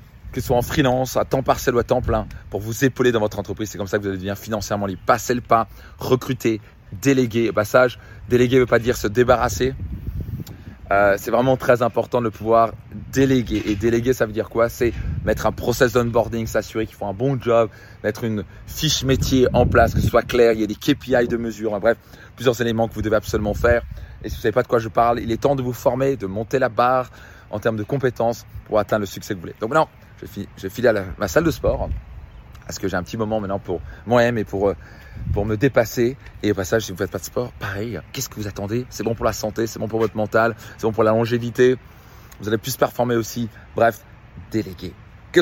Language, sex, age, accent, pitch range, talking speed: French, male, 20-39, French, 105-120 Hz, 250 wpm